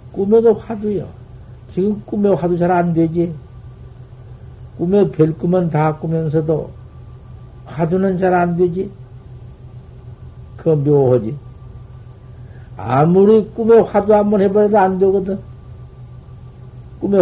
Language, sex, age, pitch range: Korean, male, 60-79, 120-175 Hz